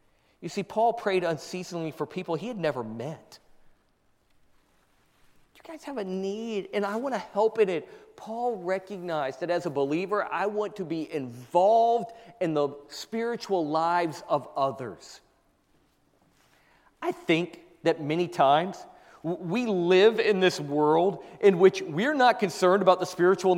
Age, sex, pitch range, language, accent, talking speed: 40-59, male, 165-215 Hz, English, American, 150 wpm